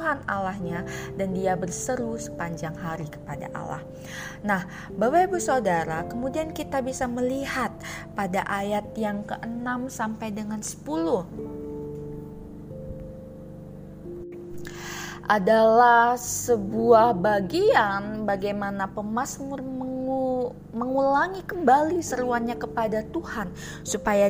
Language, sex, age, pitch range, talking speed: Indonesian, female, 20-39, 180-250 Hz, 85 wpm